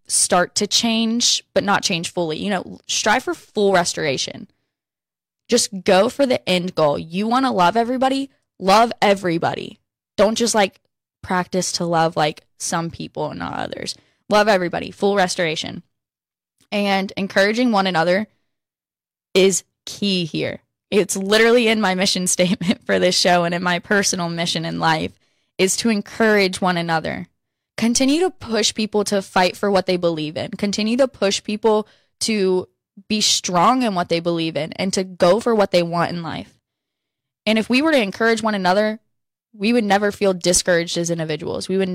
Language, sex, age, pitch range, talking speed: English, female, 10-29, 170-210 Hz, 170 wpm